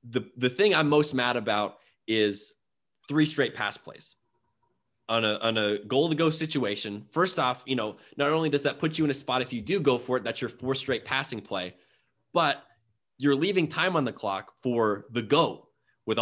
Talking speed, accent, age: 205 wpm, American, 20-39